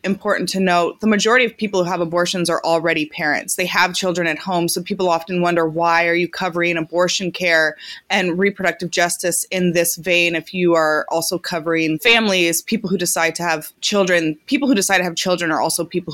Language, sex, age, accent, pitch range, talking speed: English, female, 20-39, American, 170-195 Hz, 205 wpm